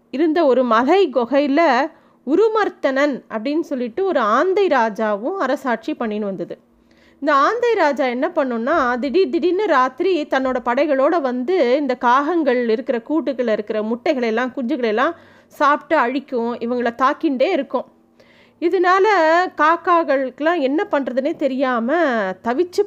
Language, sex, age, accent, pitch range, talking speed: Tamil, female, 30-49, native, 245-320 Hz, 110 wpm